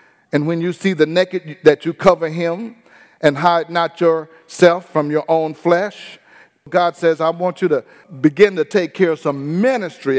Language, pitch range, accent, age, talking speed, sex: English, 155-190 Hz, American, 50-69, 185 wpm, male